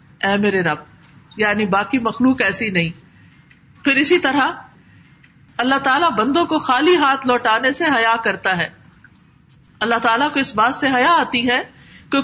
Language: Urdu